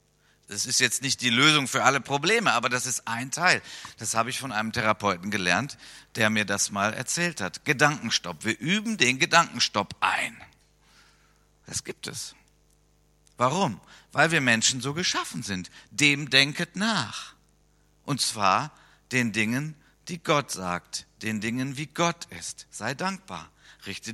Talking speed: 150 wpm